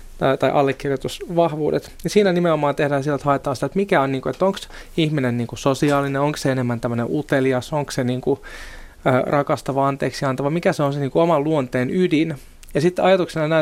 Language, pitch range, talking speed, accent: Finnish, 135-180 Hz, 155 wpm, native